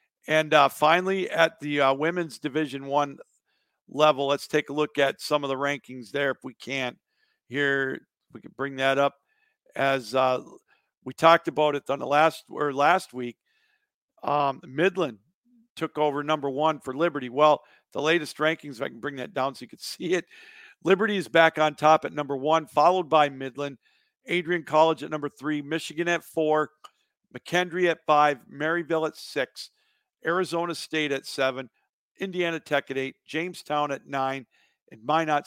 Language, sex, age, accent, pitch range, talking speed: English, male, 50-69, American, 140-170 Hz, 170 wpm